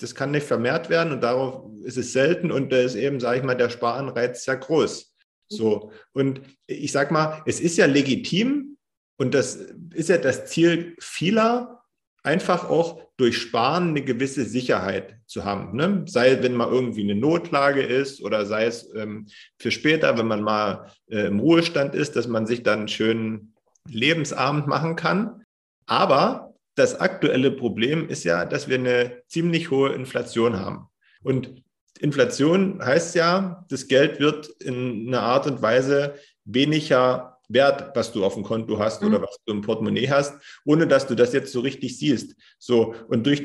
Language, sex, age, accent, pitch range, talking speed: German, male, 40-59, German, 120-170 Hz, 175 wpm